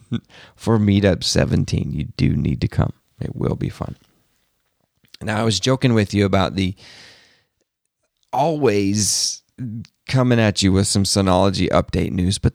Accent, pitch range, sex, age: American, 95-120 Hz, male, 40-59